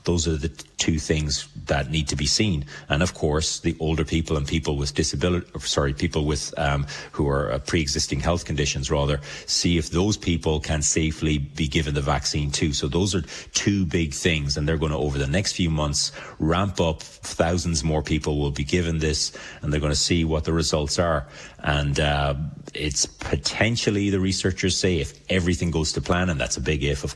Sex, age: male, 30-49